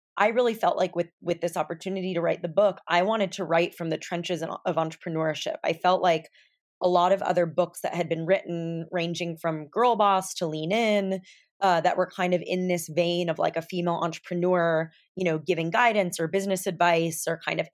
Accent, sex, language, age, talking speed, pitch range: American, female, English, 20-39, 215 wpm, 165-190 Hz